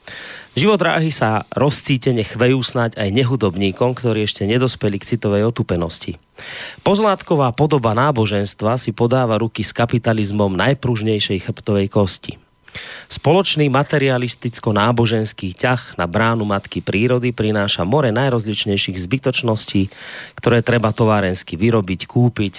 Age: 30-49